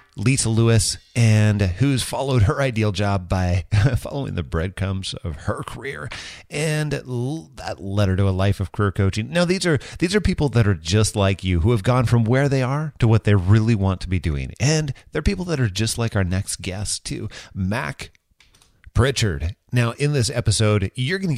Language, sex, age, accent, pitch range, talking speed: English, male, 30-49, American, 95-130 Hz, 200 wpm